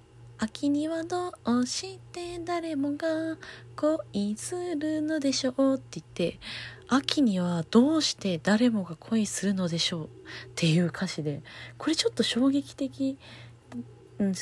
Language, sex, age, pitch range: Japanese, female, 20-39, 160-265 Hz